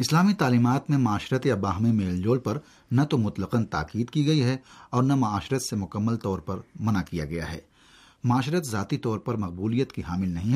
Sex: male